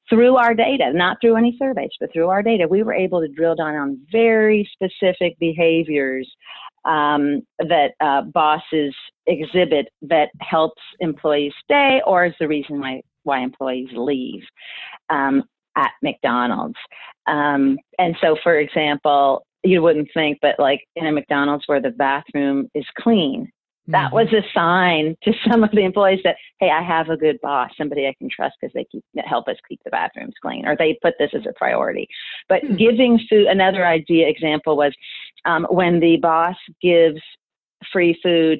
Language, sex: English, female